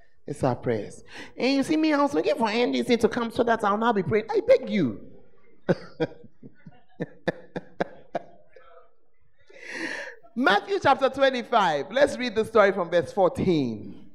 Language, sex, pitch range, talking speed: English, male, 160-255 Hz, 135 wpm